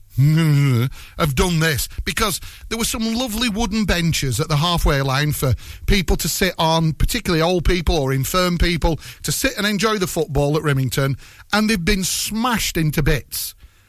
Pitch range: 130-185 Hz